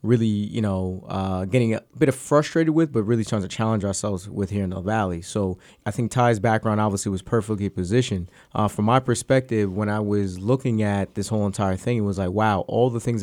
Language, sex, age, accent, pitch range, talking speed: English, male, 30-49, American, 100-115 Hz, 225 wpm